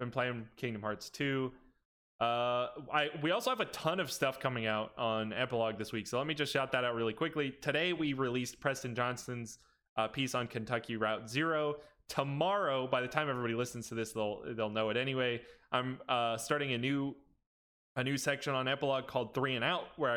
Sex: male